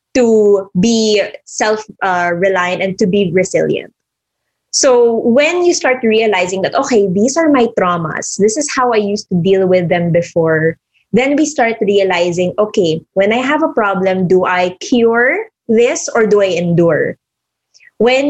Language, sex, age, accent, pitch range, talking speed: English, female, 20-39, Filipino, 190-245 Hz, 155 wpm